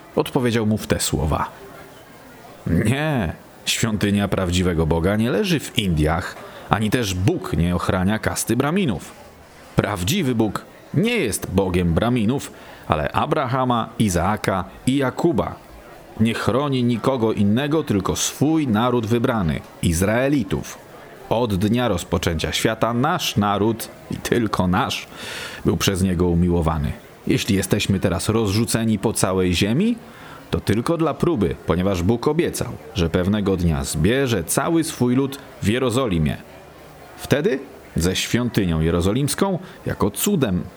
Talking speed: 120 wpm